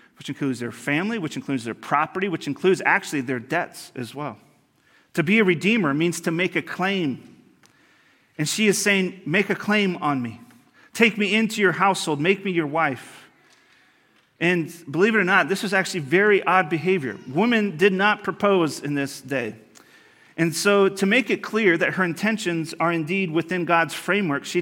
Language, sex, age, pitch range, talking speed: English, male, 40-59, 165-200 Hz, 185 wpm